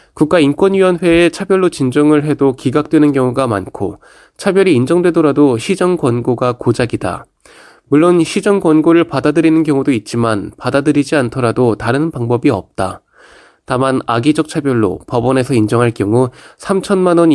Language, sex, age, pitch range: Korean, male, 20-39, 120-160 Hz